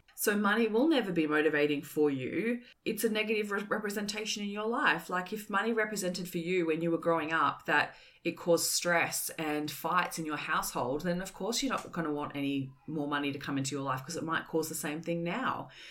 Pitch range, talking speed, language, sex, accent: 155-185 Hz, 225 wpm, English, female, Australian